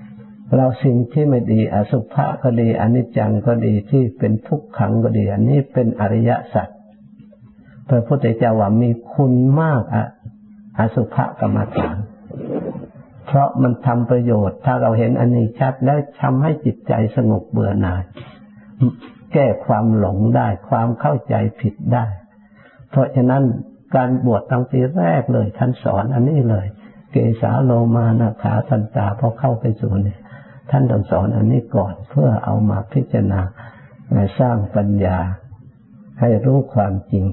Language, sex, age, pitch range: Thai, male, 60-79, 105-125 Hz